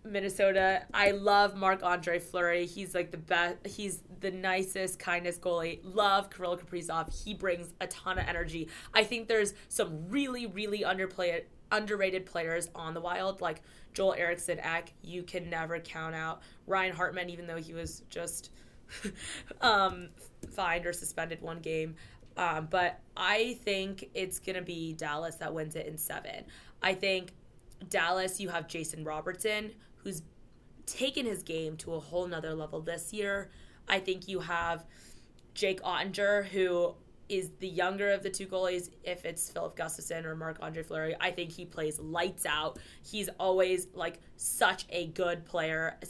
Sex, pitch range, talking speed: female, 165-190 Hz, 165 wpm